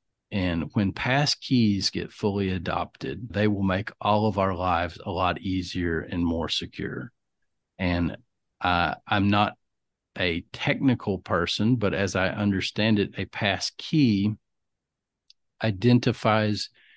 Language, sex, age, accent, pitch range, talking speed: English, male, 50-69, American, 90-115 Hz, 125 wpm